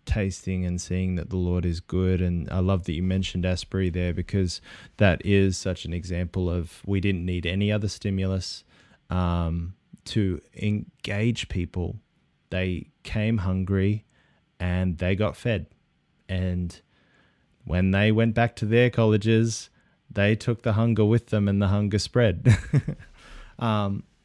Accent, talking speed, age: Australian, 145 wpm, 20-39